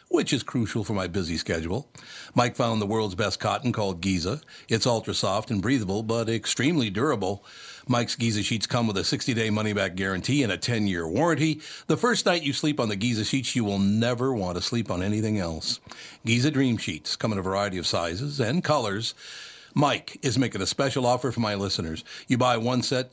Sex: male